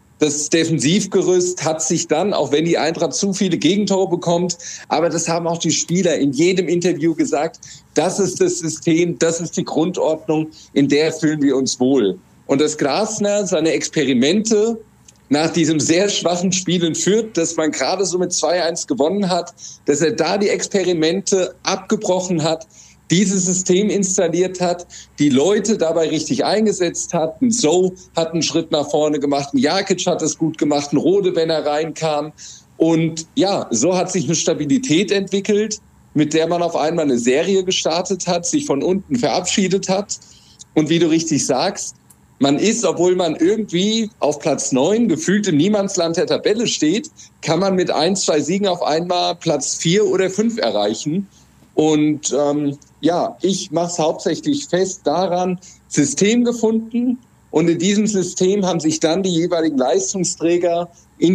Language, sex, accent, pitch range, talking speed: German, male, German, 155-190 Hz, 160 wpm